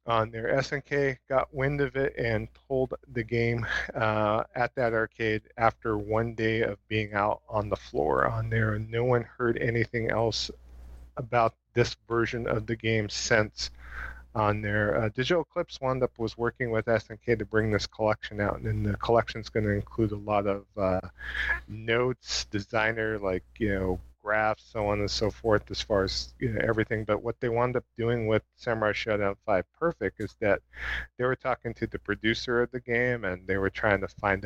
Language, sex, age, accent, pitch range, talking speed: English, male, 40-59, American, 105-120 Hz, 190 wpm